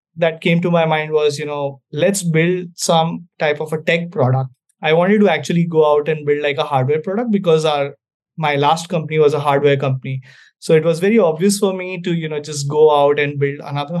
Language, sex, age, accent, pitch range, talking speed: English, male, 20-39, Indian, 140-170 Hz, 225 wpm